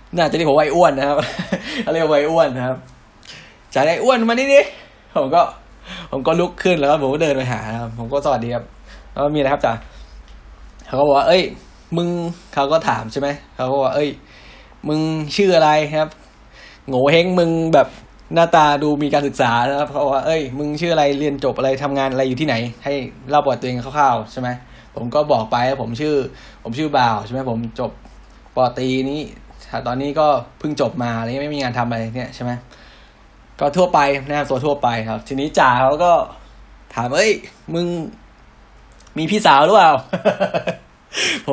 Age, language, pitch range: 10-29, Thai, 125-160 Hz